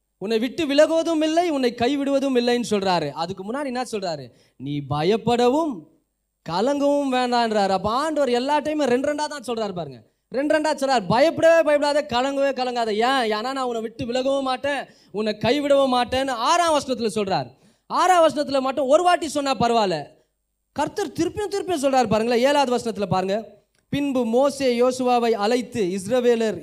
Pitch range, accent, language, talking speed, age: 180-255 Hz, native, Tamil, 140 wpm, 20-39